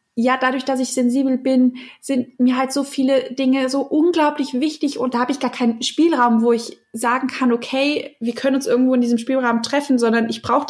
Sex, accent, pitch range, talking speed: female, German, 225-265 Hz, 215 wpm